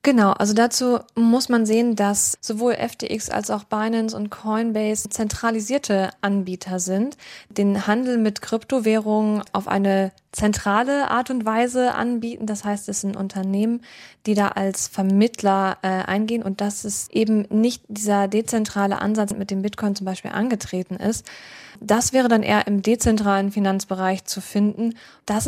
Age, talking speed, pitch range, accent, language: 20-39, 150 wpm, 200-230 Hz, German, German